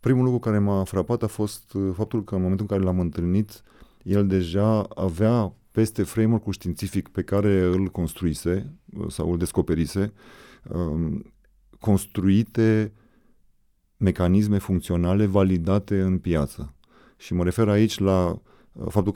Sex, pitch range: male, 90-105 Hz